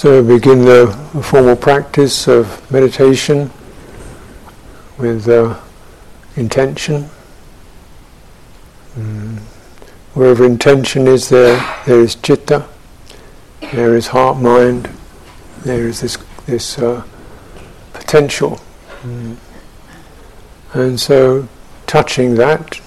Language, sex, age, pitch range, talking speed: English, male, 60-79, 115-135 Hz, 85 wpm